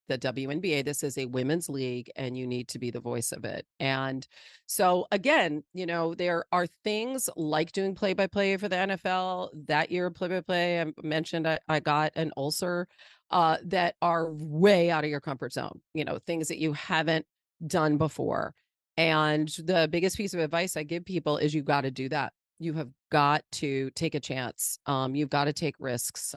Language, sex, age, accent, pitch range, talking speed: English, female, 40-59, American, 145-180 Hz, 190 wpm